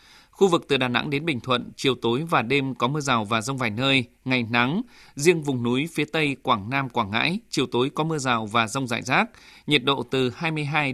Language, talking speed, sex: Vietnamese, 235 wpm, male